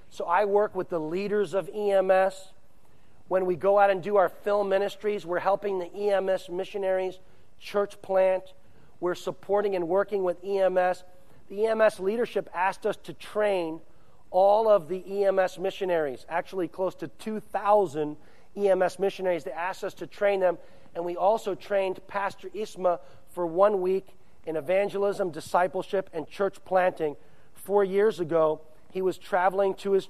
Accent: American